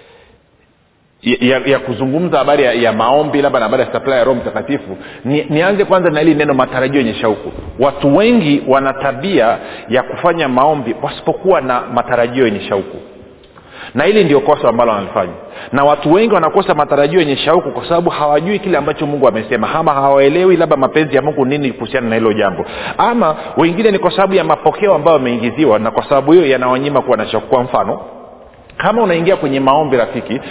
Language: Swahili